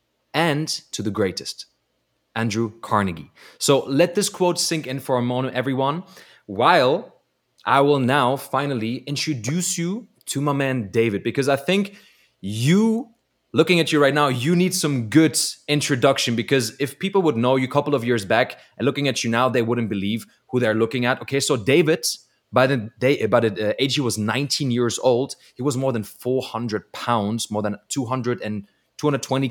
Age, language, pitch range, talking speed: 20-39, English, 120-155 Hz, 180 wpm